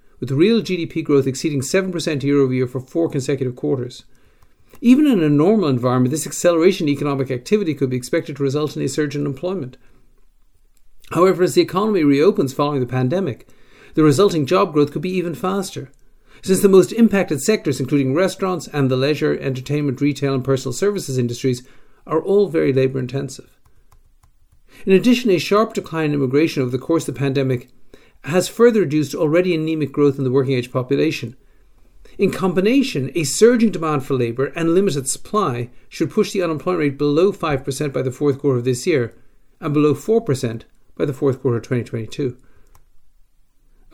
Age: 50-69